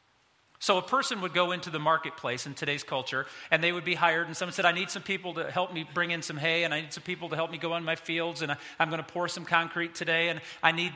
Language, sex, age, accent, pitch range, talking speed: English, male, 40-59, American, 160-195 Hz, 295 wpm